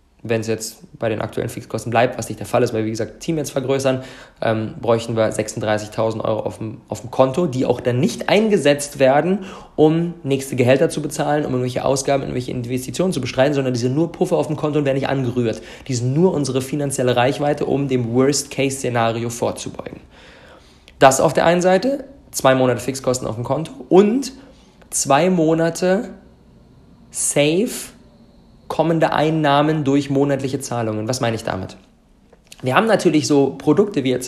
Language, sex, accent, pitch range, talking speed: German, male, German, 125-155 Hz, 175 wpm